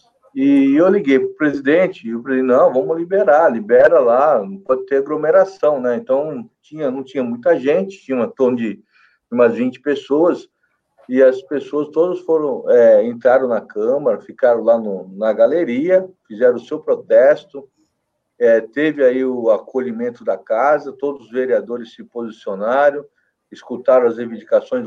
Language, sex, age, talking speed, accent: Portuguese, male, 50-69, 155 wpm, Brazilian